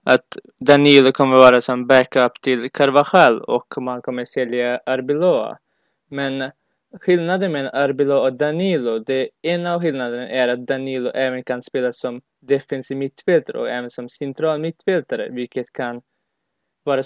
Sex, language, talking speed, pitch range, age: male, Swedish, 140 wpm, 130-160 Hz, 20-39